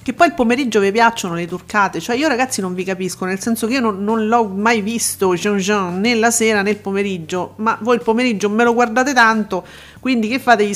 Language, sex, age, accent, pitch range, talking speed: Italian, female, 40-59, native, 195-245 Hz, 220 wpm